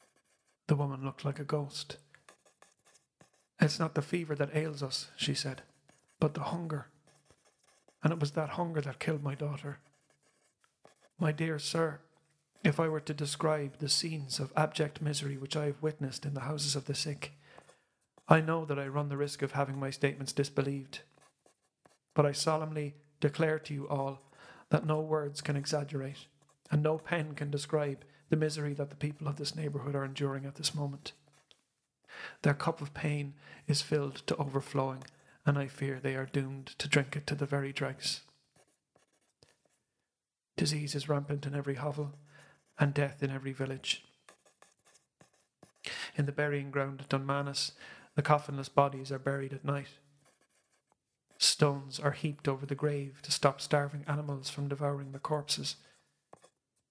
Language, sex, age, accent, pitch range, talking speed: English, male, 40-59, Irish, 140-150 Hz, 160 wpm